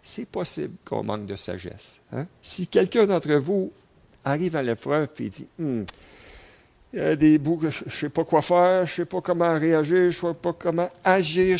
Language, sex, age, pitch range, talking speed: French, male, 50-69, 120-170 Hz, 205 wpm